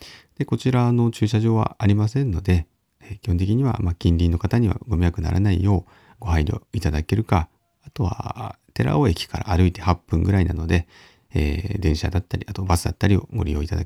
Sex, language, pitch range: male, Japanese, 85-115 Hz